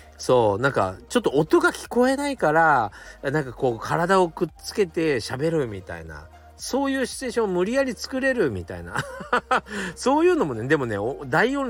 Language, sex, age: Japanese, male, 40-59